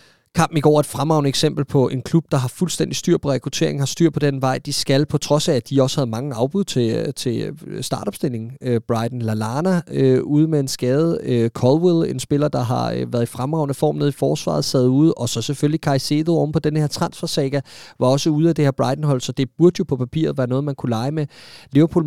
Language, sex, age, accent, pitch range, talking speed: Danish, male, 30-49, native, 135-170 Hz, 240 wpm